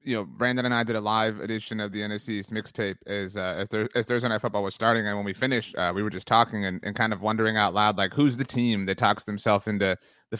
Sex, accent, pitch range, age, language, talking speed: male, American, 105-135 Hz, 30-49, English, 265 wpm